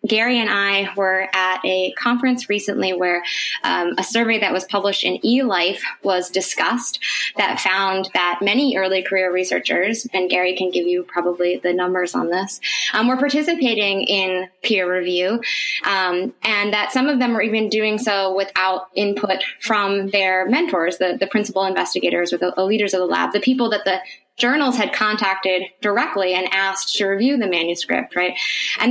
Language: English